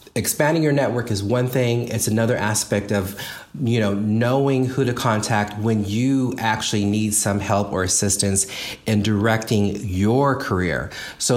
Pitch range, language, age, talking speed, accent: 100-125 Hz, English, 40-59, 155 wpm, American